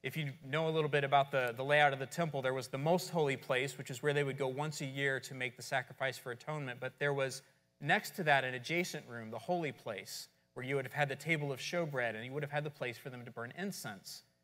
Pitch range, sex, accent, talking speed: 115-150 Hz, male, American, 280 wpm